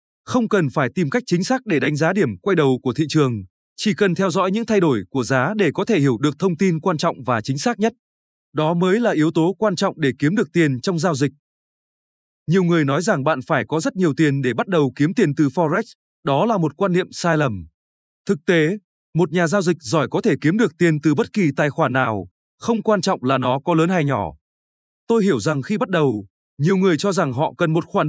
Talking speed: 250 wpm